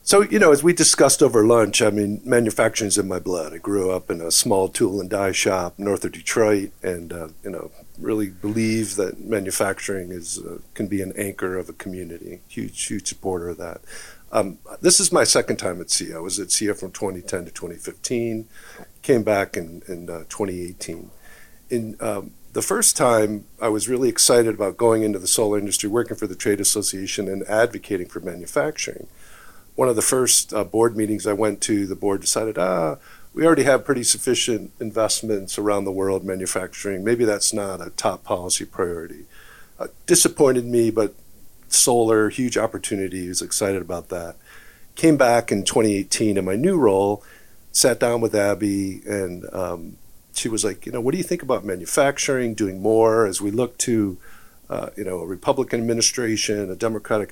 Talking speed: 185 wpm